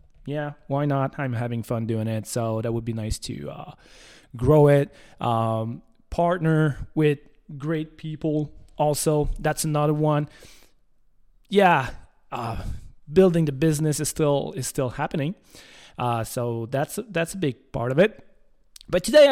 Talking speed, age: 145 wpm, 20-39